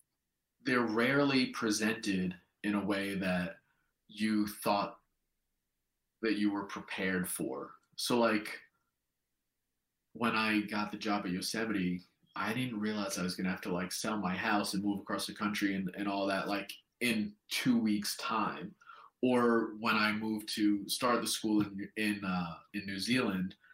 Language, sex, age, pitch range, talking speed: English, male, 30-49, 100-120 Hz, 160 wpm